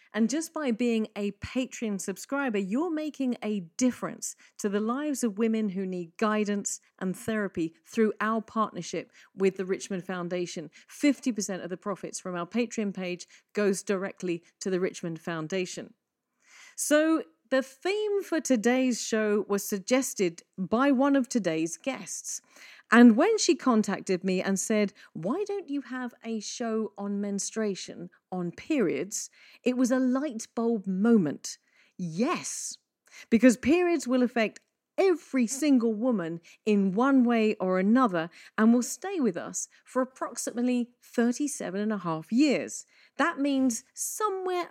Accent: British